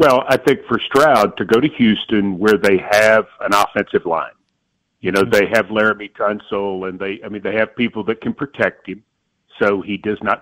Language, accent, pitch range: English, American, 100-125 Hz